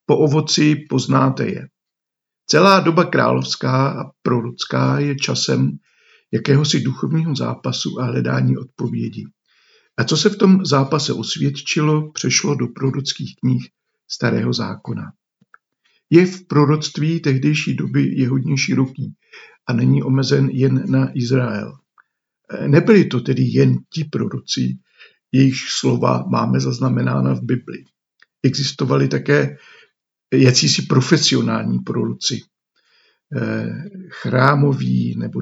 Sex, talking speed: male, 105 wpm